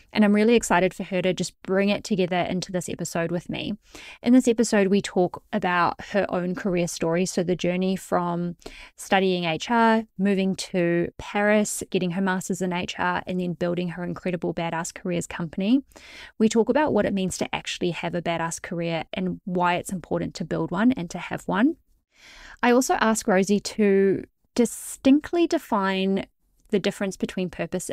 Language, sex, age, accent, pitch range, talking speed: English, female, 20-39, Australian, 175-215 Hz, 175 wpm